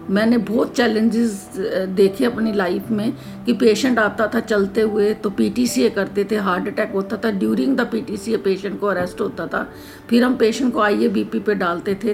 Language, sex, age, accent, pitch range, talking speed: English, female, 50-69, Indian, 205-240 Hz, 195 wpm